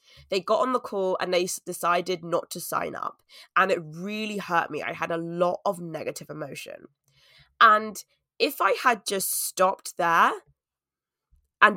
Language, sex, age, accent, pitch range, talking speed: English, female, 20-39, British, 170-215 Hz, 165 wpm